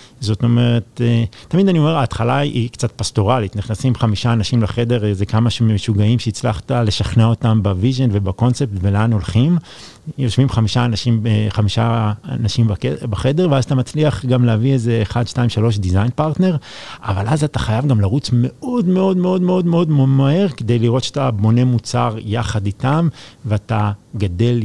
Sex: male